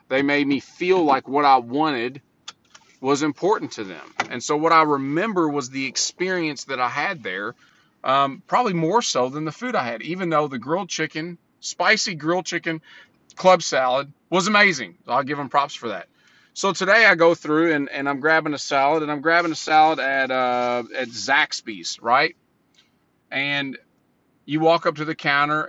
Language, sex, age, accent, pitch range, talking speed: English, male, 40-59, American, 135-170 Hz, 180 wpm